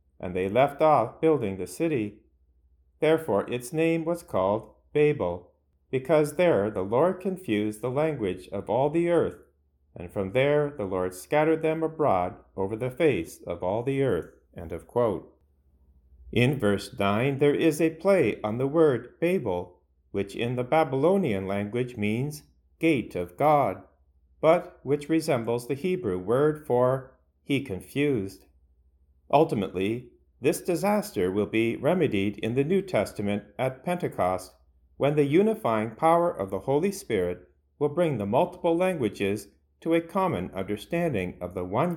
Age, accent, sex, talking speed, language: 50-69, American, male, 145 wpm, English